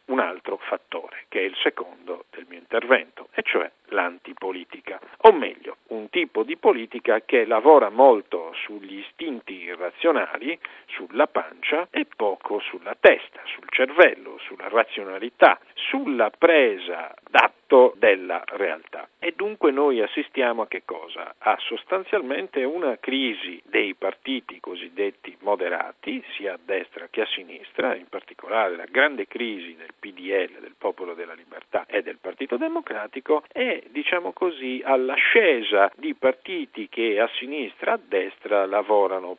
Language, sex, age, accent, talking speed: Italian, male, 50-69, native, 135 wpm